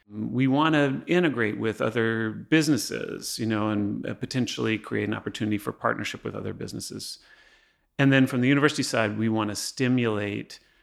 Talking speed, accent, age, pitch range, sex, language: 160 wpm, American, 30-49, 105-130 Hz, male, English